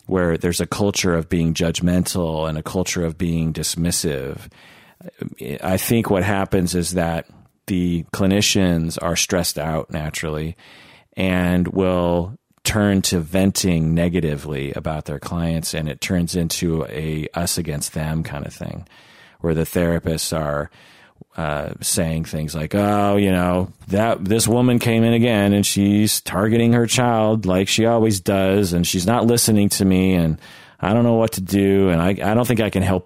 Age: 40-59